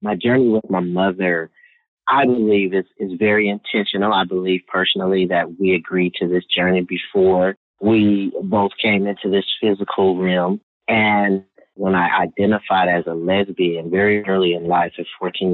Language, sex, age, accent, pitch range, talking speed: English, male, 30-49, American, 90-105 Hz, 160 wpm